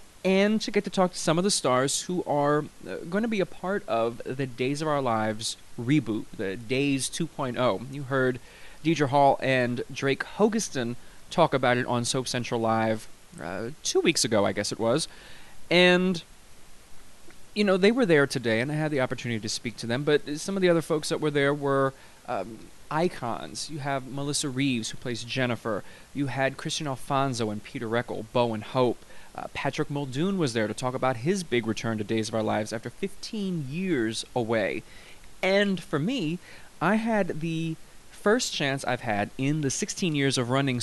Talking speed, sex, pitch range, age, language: 190 wpm, male, 120-165 Hz, 20-39, English